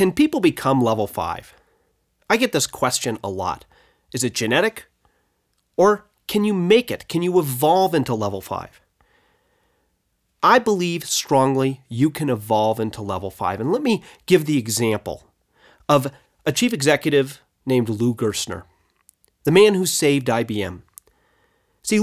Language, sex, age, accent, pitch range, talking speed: English, male, 30-49, American, 120-185 Hz, 145 wpm